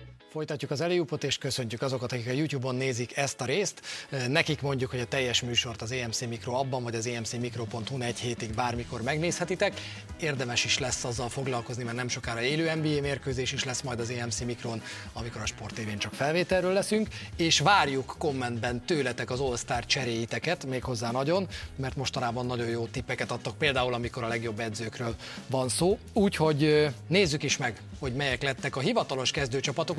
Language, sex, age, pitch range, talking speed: Hungarian, male, 30-49, 120-155 Hz, 170 wpm